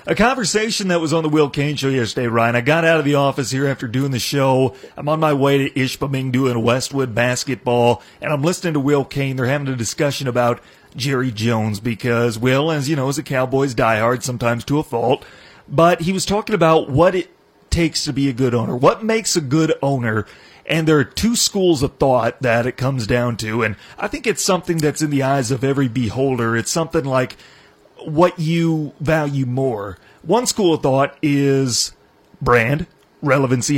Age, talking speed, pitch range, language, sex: 30-49, 200 wpm, 125-150 Hz, English, male